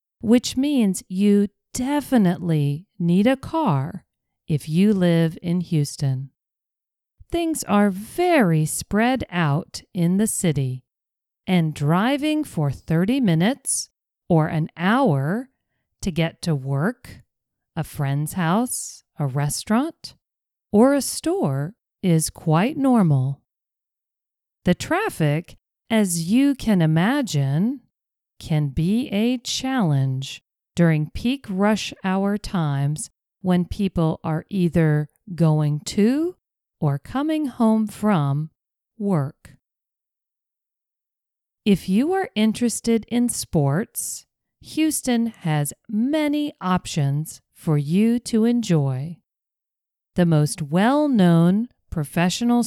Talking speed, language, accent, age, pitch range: 100 wpm, English, American, 40-59, 155-235 Hz